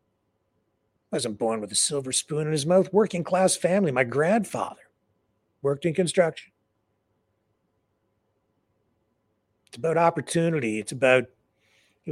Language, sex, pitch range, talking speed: English, male, 110-150 Hz, 115 wpm